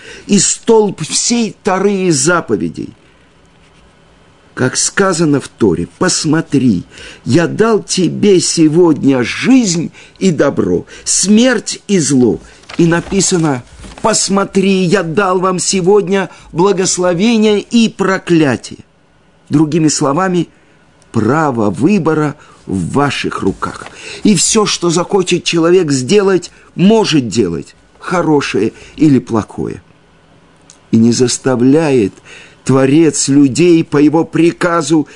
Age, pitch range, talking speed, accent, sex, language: 50-69, 135-190 Hz, 95 wpm, native, male, Russian